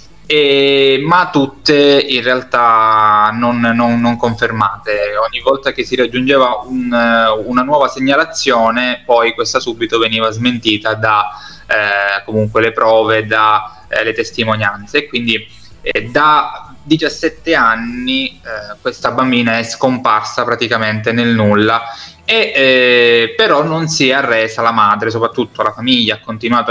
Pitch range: 110-140 Hz